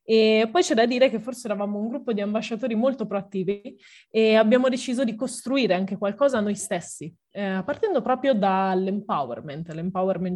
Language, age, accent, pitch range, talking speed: Italian, 20-39, native, 185-225 Hz, 160 wpm